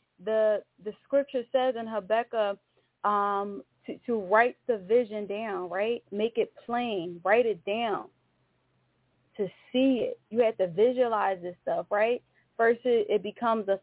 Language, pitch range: English, 205-240 Hz